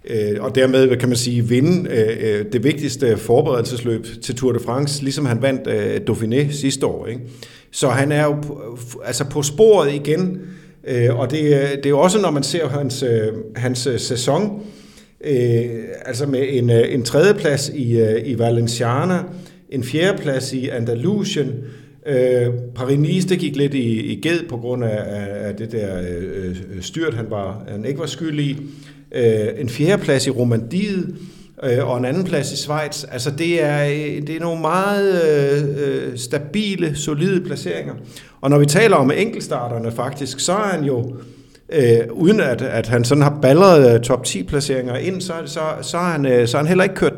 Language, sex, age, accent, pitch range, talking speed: Danish, male, 50-69, native, 120-155 Hz, 165 wpm